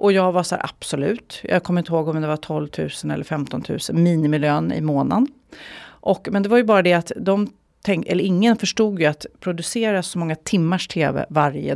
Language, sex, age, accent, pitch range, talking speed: English, female, 40-59, Swedish, 165-225 Hz, 215 wpm